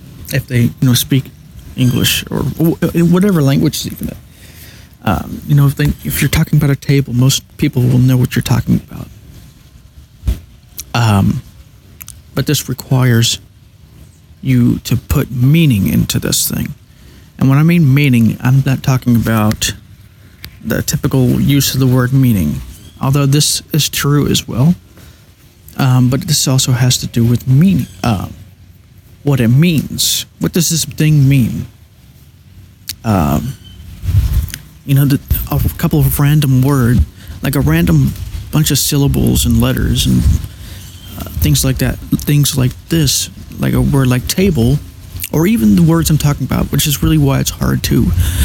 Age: 40-59